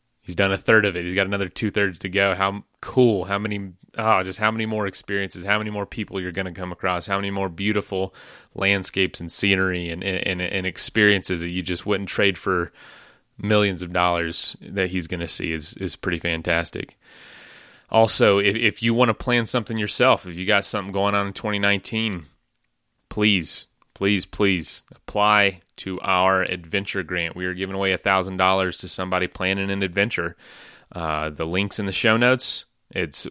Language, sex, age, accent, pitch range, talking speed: English, male, 30-49, American, 90-100 Hz, 185 wpm